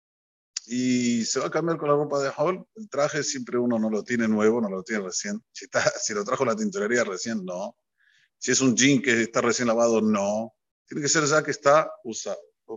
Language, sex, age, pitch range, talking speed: Spanish, male, 50-69, 115-155 Hz, 225 wpm